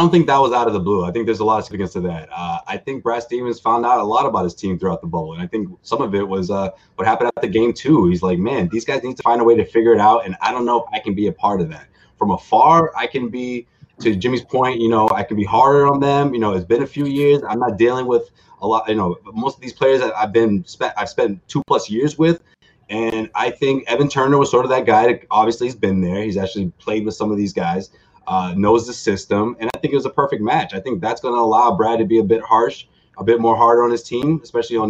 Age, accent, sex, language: 20-39, American, male, English